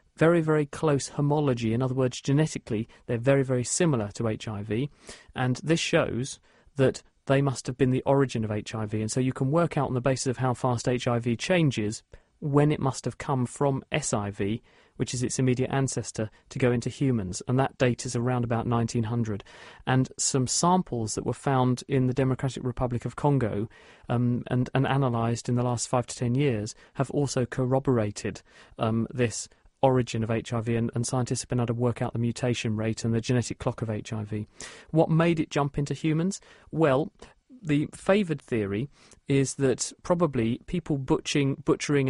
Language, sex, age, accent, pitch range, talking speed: English, male, 40-59, British, 115-140 Hz, 180 wpm